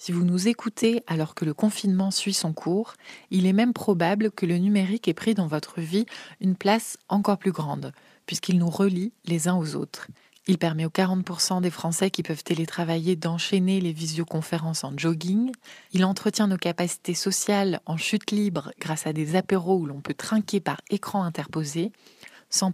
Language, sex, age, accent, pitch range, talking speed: French, female, 20-39, French, 170-200 Hz, 180 wpm